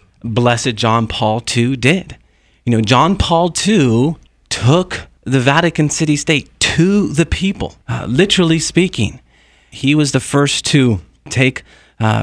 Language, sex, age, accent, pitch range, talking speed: English, male, 40-59, American, 110-135 Hz, 135 wpm